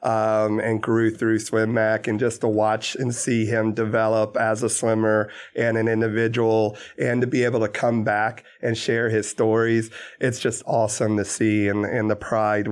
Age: 30-49